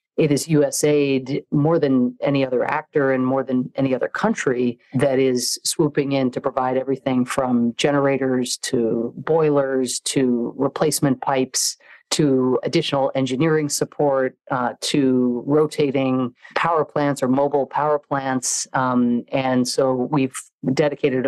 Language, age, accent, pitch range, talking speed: English, 40-59, American, 125-145 Hz, 130 wpm